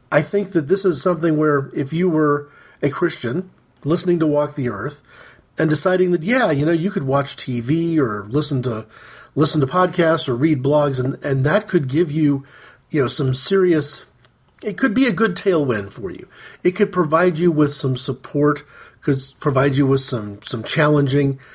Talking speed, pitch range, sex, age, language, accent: 190 wpm, 140-185 Hz, male, 40-59, English, American